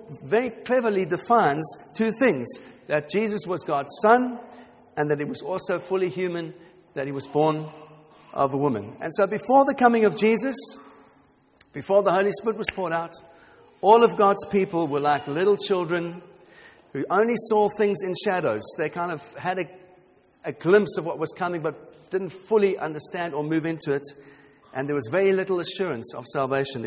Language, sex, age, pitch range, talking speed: English, male, 50-69, 145-195 Hz, 175 wpm